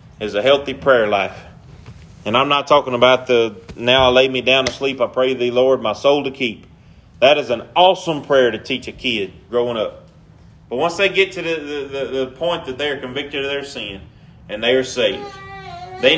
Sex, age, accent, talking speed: male, 30-49, American, 215 wpm